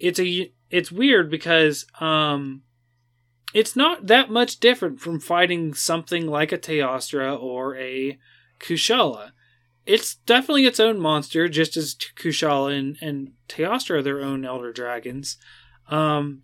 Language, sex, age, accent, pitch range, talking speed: English, male, 20-39, American, 130-165 Hz, 135 wpm